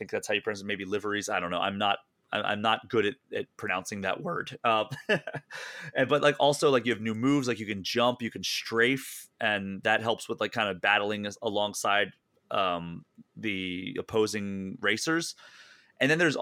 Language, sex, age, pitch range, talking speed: English, male, 30-49, 105-130 Hz, 195 wpm